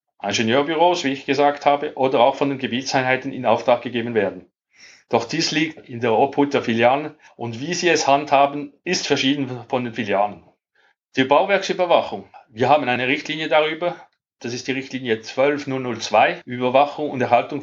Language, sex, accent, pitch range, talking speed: German, male, Austrian, 120-145 Hz, 160 wpm